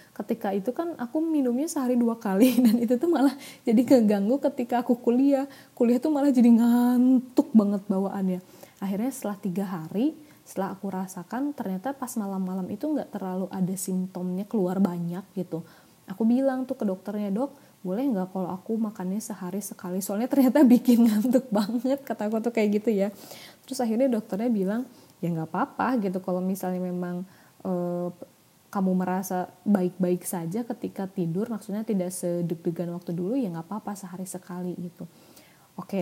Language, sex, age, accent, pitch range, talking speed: Indonesian, female, 20-39, native, 185-245 Hz, 160 wpm